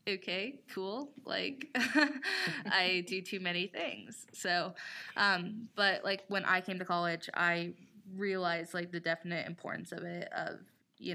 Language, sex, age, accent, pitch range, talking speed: English, female, 20-39, American, 165-195 Hz, 145 wpm